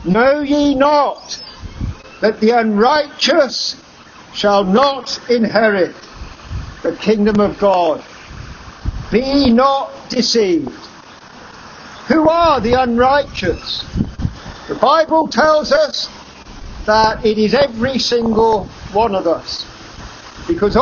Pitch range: 220-300 Hz